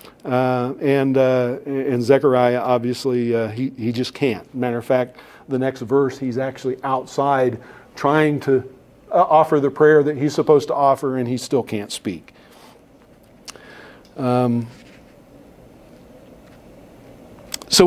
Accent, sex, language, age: American, male, English, 50-69